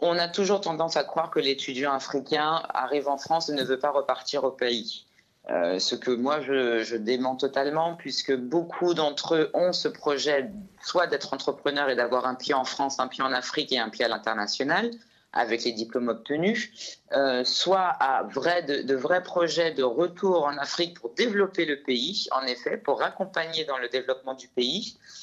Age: 30-49